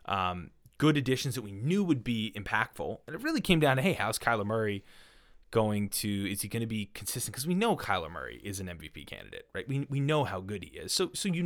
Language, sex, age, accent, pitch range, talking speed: English, male, 20-39, American, 110-160 Hz, 245 wpm